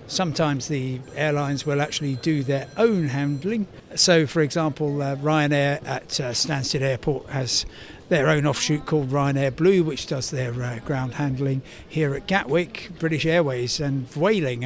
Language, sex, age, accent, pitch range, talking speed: English, male, 60-79, British, 135-170 Hz, 155 wpm